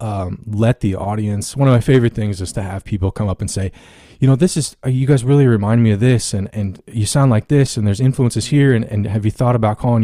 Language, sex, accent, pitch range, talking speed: English, male, American, 100-125 Hz, 270 wpm